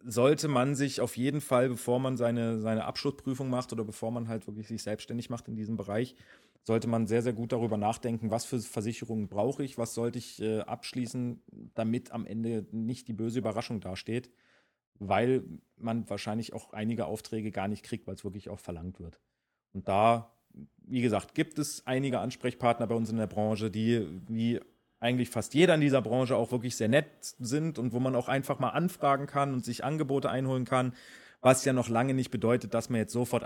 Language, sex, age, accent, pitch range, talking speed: German, male, 40-59, German, 110-125 Hz, 200 wpm